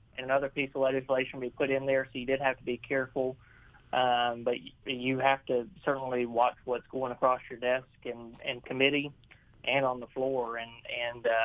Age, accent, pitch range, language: 30-49, American, 120-135 Hz, English